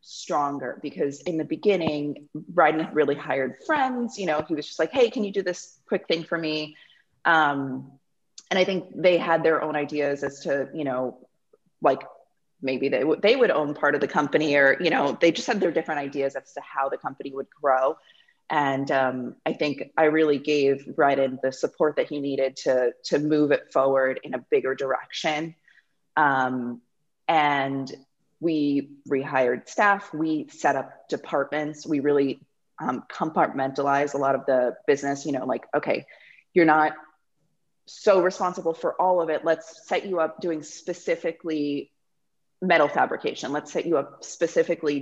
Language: English